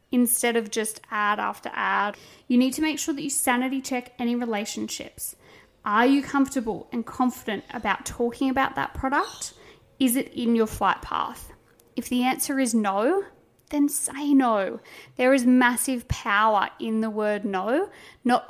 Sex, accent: female, Australian